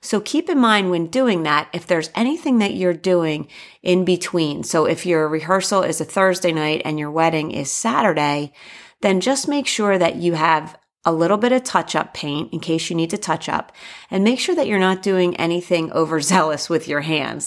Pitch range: 155-195 Hz